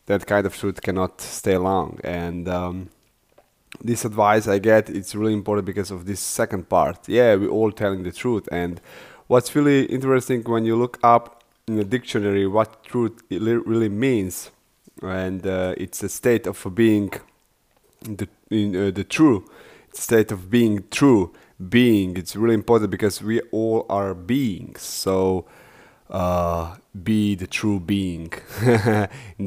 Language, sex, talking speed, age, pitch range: English, male, 155 wpm, 30-49, 95-110 Hz